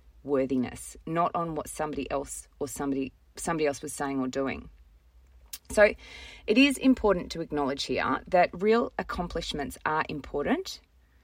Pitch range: 130-165 Hz